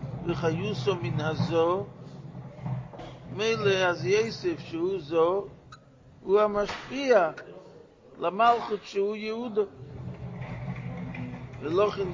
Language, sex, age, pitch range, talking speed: English, male, 50-69, 140-195 Hz, 70 wpm